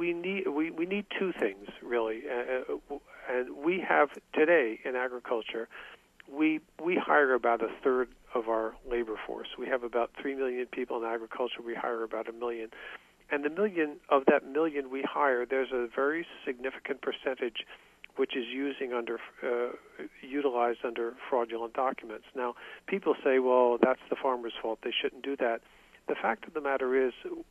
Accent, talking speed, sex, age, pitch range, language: American, 170 wpm, male, 50-69, 120-145 Hz, English